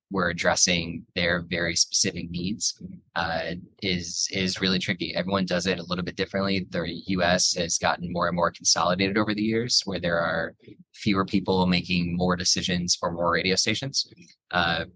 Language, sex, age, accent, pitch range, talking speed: English, male, 20-39, American, 85-95 Hz, 170 wpm